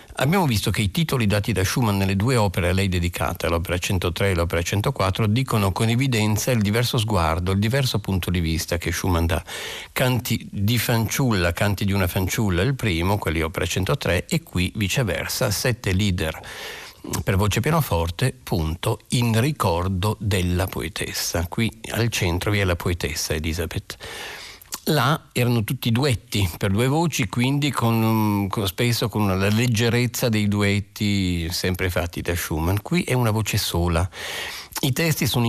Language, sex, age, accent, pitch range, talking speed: Italian, male, 50-69, native, 90-120 Hz, 155 wpm